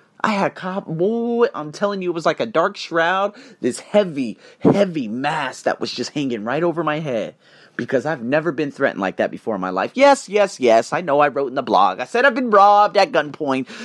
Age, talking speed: 30-49, 230 wpm